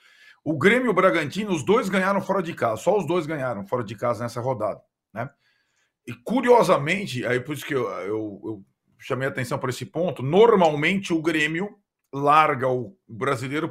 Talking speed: 185 wpm